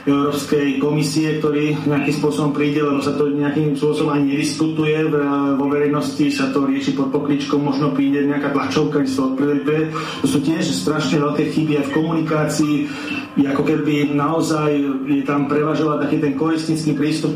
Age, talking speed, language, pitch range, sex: 30-49, 160 wpm, Slovak, 140-155 Hz, male